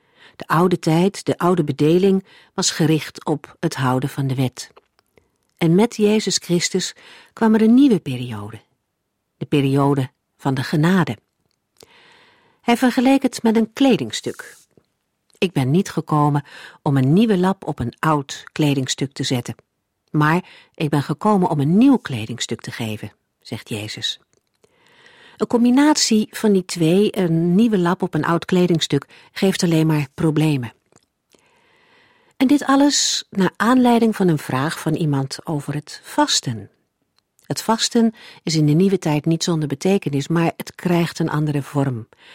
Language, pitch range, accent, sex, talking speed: Dutch, 140-220 Hz, Dutch, female, 150 wpm